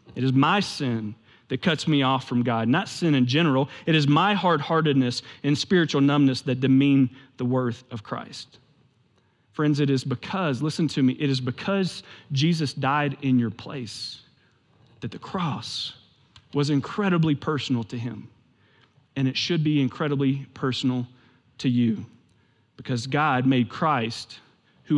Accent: American